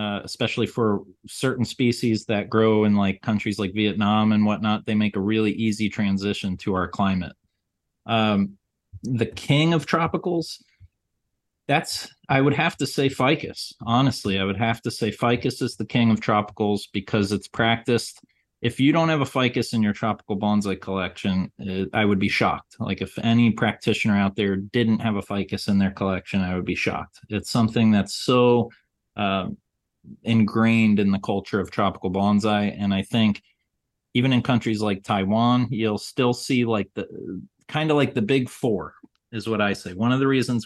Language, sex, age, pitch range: English, male, 30-49, 105-125 Hz